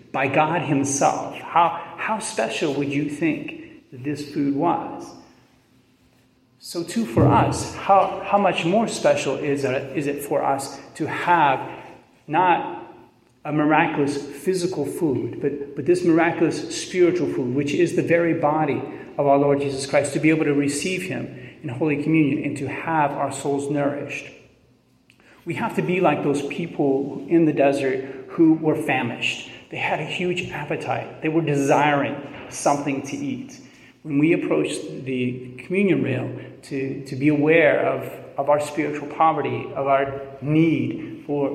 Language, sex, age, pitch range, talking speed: English, male, 40-59, 135-160 Hz, 155 wpm